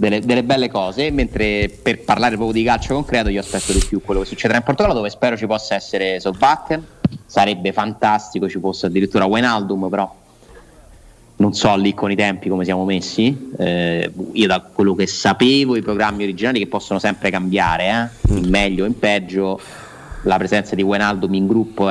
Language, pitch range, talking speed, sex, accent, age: Italian, 95-110 Hz, 185 wpm, male, native, 30-49